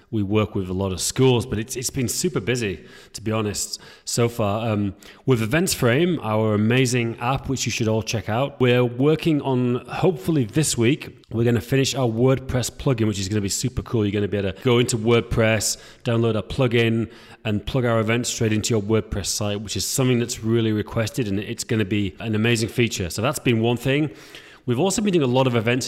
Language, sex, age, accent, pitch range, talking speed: English, male, 30-49, British, 105-130 Hz, 230 wpm